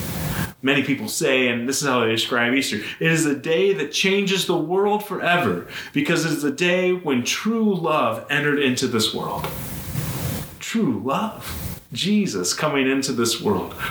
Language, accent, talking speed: English, American, 165 wpm